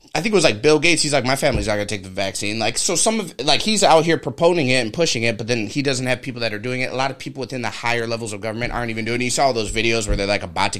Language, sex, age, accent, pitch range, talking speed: English, male, 30-49, American, 105-130 Hz, 355 wpm